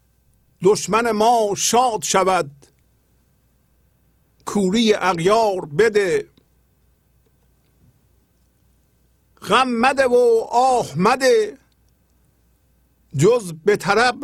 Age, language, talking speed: 50-69, Persian, 65 wpm